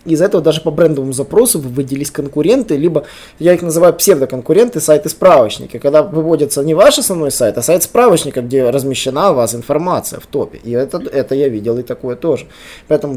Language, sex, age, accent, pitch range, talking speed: Russian, male, 20-39, native, 145-205 Hz, 180 wpm